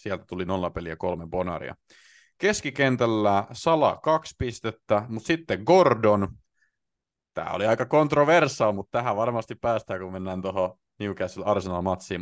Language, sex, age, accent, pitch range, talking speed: Finnish, male, 30-49, native, 90-110 Hz, 125 wpm